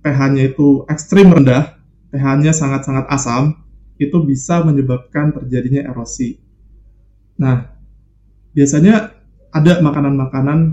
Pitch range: 130-165 Hz